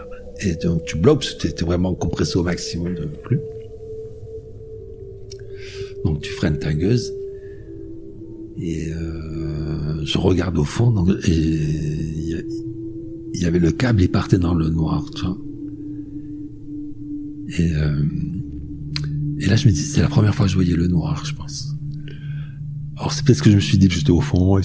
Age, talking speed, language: 60-79, 165 wpm, French